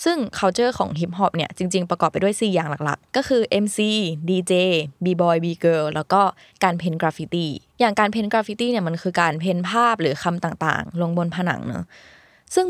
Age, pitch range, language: 20-39, 165-205 Hz, Thai